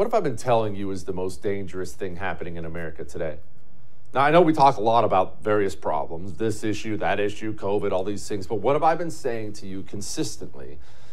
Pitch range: 95-125 Hz